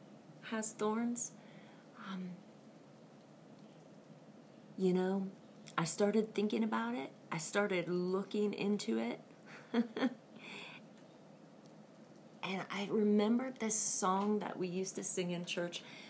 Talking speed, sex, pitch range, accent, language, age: 100 wpm, female, 160-210 Hz, American, English, 30-49